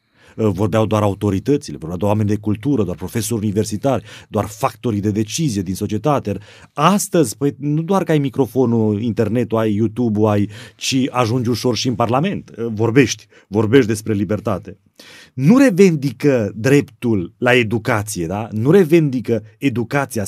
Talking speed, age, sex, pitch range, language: 140 wpm, 30-49, male, 110-160 Hz, Romanian